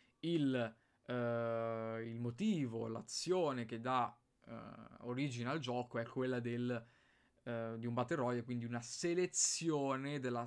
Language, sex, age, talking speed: Italian, male, 20-39, 125 wpm